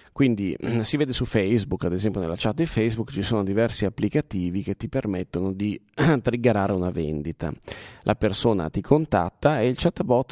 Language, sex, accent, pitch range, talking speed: Italian, male, native, 95-125 Hz, 170 wpm